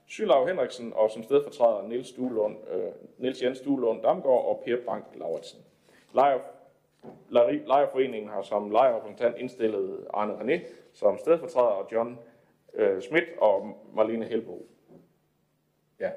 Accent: native